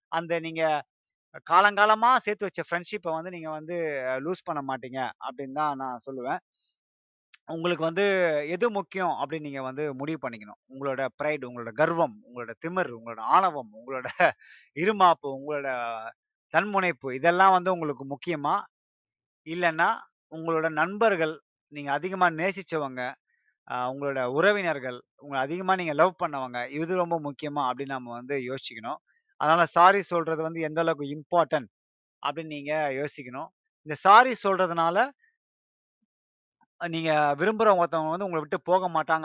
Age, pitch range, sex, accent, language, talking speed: 30-49, 135-175 Hz, male, native, Tamil, 125 wpm